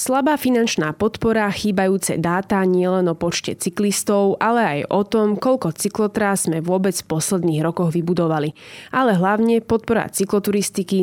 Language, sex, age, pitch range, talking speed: Slovak, female, 20-39, 170-210 Hz, 135 wpm